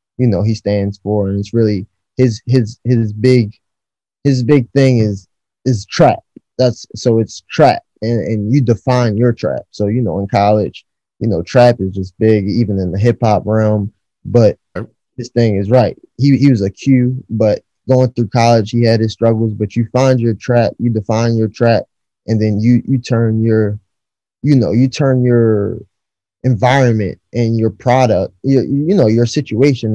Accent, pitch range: American, 100-120 Hz